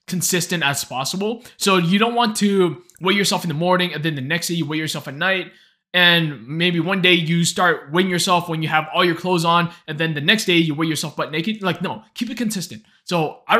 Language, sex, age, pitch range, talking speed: English, male, 20-39, 150-190 Hz, 245 wpm